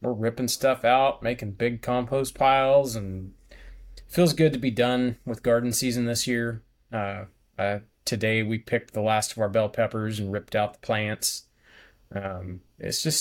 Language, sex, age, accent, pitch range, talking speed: English, male, 30-49, American, 105-135 Hz, 175 wpm